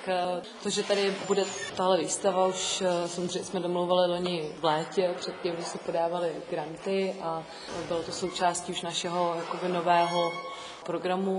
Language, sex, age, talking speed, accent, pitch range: Czech, female, 20-39, 155 wpm, native, 165-180 Hz